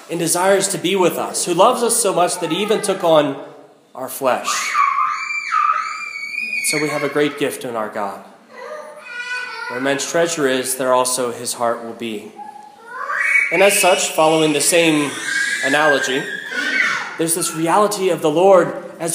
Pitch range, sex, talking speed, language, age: 145-195 Hz, male, 160 wpm, English, 30-49